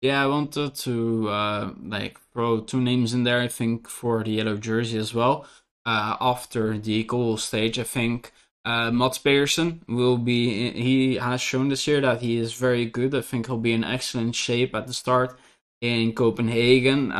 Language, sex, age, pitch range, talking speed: English, male, 20-39, 110-125 Hz, 185 wpm